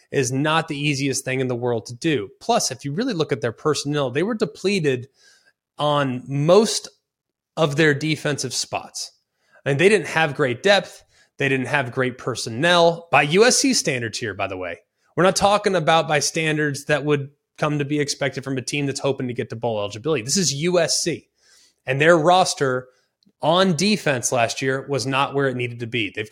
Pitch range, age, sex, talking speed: 135-160 Hz, 20-39, male, 195 wpm